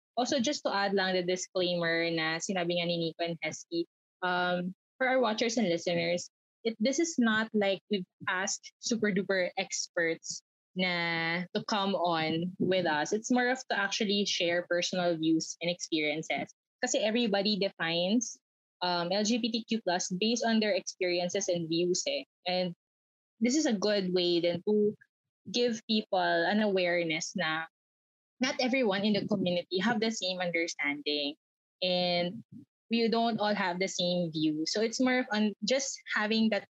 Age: 20-39